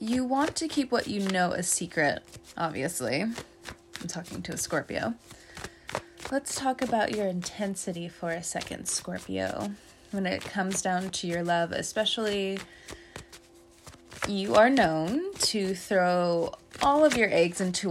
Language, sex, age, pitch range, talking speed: English, female, 20-39, 170-235 Hz, 140 wpm